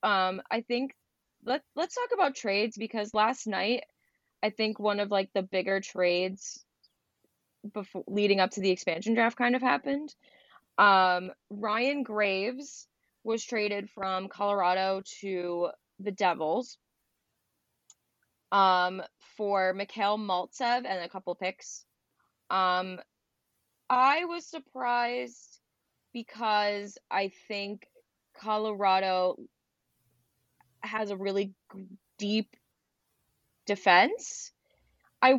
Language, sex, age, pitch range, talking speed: English, female, 20-39, 185-240 Hz, 105 wpm